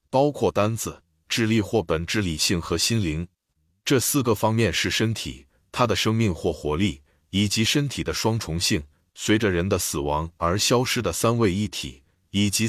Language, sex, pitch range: Chinese, male, 85-115 Hz